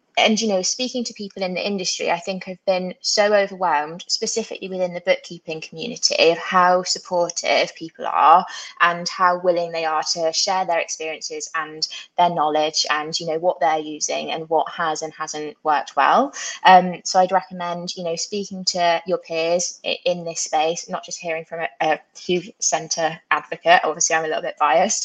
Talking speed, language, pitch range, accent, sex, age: 185 wpm, English, 165-185 Hz, British, female, 20-39